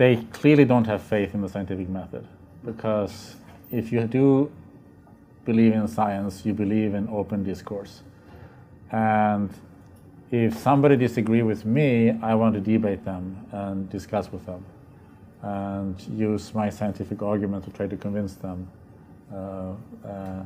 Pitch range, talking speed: 95-115 Hz, 140 wpm